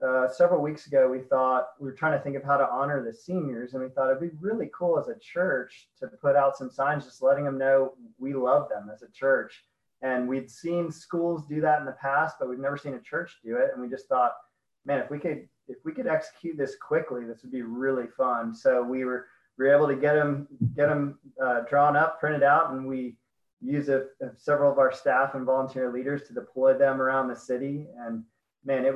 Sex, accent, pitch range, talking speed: male, American, 125-145 Hz, 240 wpm